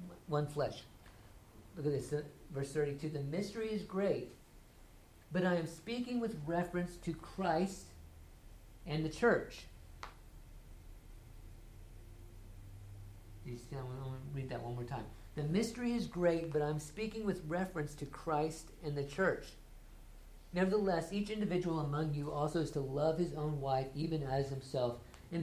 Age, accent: 50-69, American